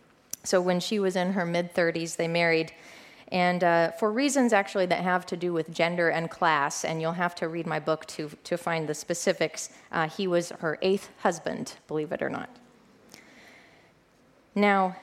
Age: 30-49